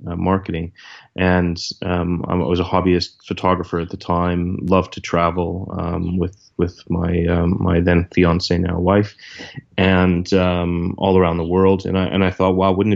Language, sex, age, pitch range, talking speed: English, male, 30-49, 85-95 Hz, 175 wpm